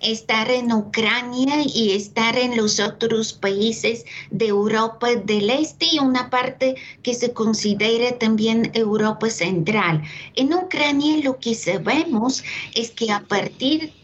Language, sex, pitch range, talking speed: Spanish, female, 220-275 Hz, 130 wpm